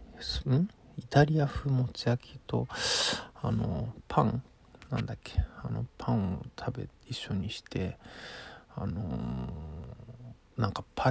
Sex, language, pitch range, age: male, Japanese, 105-130 Hz, 50-69